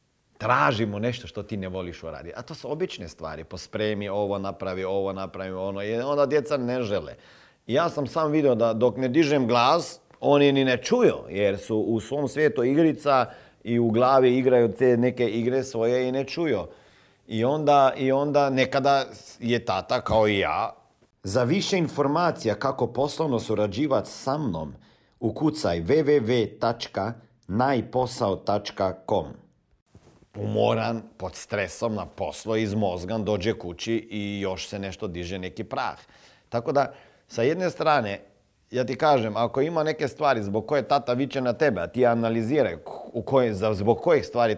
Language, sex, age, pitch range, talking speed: Croatian, male, 40-59, 105-135 Hz, 155 wpm